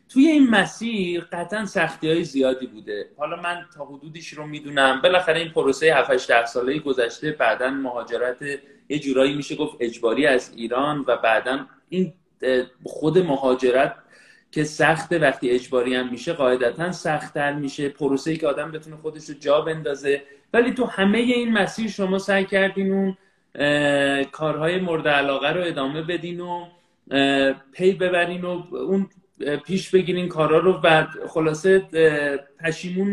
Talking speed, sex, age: 140 wpm, male, 30-49